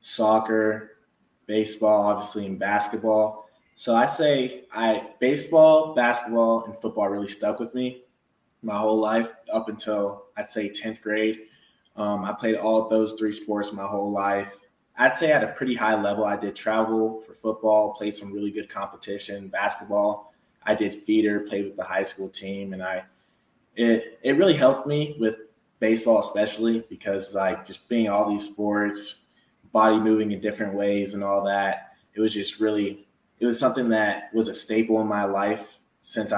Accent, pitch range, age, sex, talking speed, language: American, 100-110 Hz, 20-39, male, 170 wpm, English